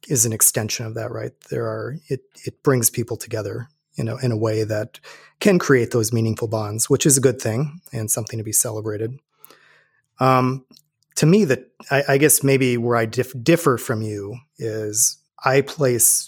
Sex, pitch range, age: male, 110-140 Hz, 30-49